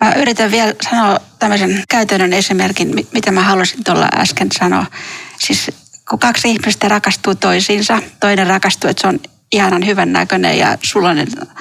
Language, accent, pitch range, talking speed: Finnish, native, 190-230 Hz, 145 wpm